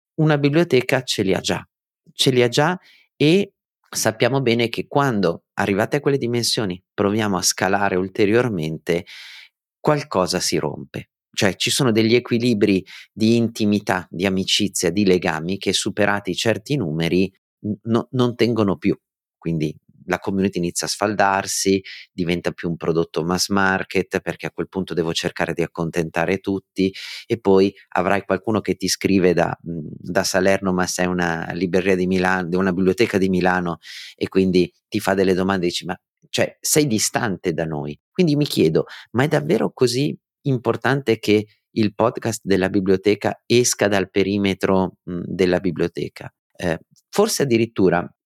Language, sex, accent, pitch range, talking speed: Italian, male, native, 90-115 Hz, 150 wpm